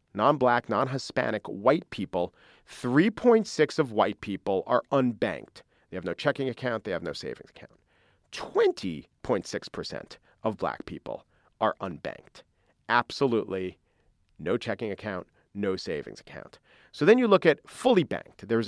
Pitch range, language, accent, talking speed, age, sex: 115-180 Hz, English, American, 130 wpm, 40-59, male